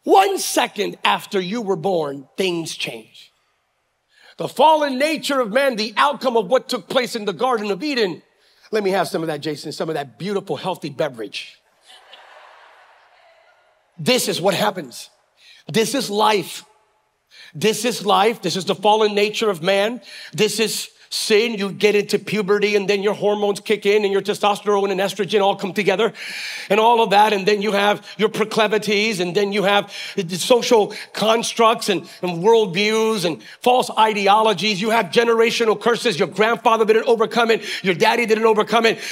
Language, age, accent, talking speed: English, 40-59, American, 170 wpm